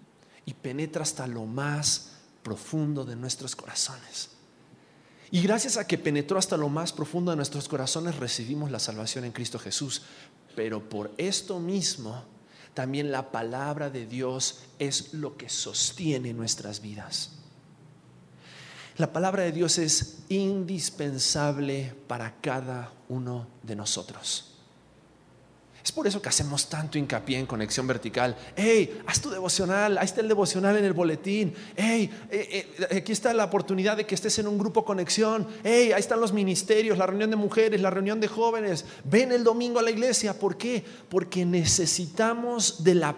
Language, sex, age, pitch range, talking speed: Spanish, male, 40-59, 135-205 Hz, 155 wpm